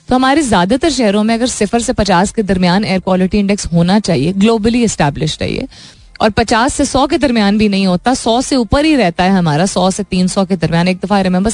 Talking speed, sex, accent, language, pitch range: 230 wpm, female, native, Hindi, 185-265 Hz